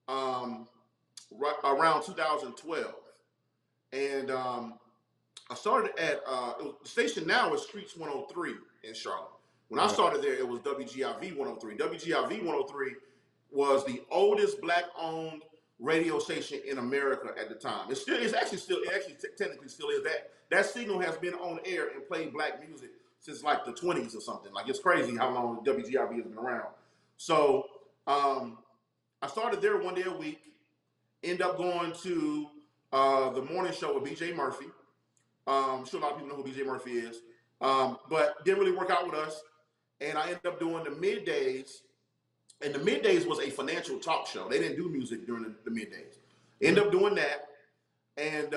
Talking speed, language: 180 wpm, English